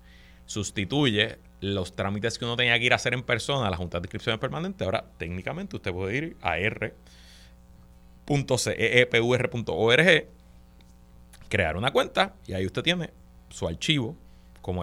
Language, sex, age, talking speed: Spanish, male, 30-49, 140 wpm